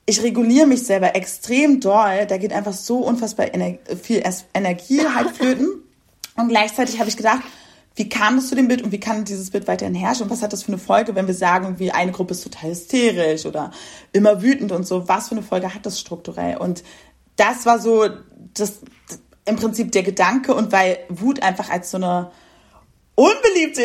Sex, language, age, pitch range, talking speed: female, German, 30-49, 210-260 Hz, 200 wpm